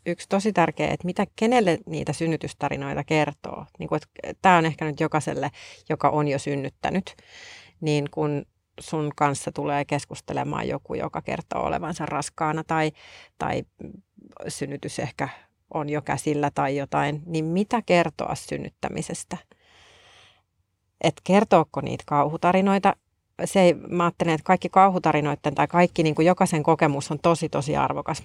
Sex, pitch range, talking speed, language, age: female, 150-180 Hz, 135 wpm, Finnish, 30-49